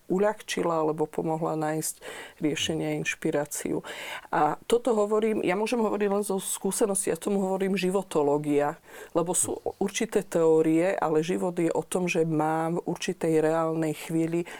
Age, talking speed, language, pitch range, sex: 40-59, 145 wpm, Slovak, 160-195 Hz, female